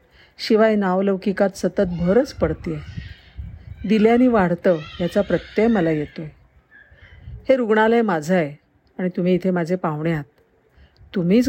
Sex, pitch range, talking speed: female, 165-200 Hz, 120 wpm